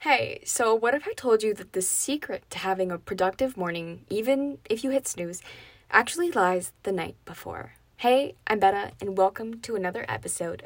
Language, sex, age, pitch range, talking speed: English, female, 20-39, 185-260 Hz, 185 wpm